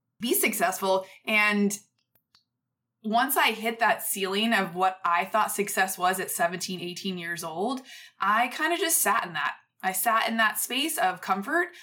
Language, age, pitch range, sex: English, 20-39, 185-235 Hz, female